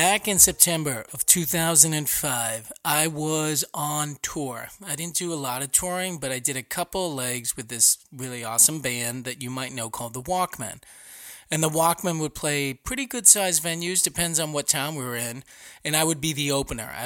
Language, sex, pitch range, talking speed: English, male, 130-160 Hz, 200 wpm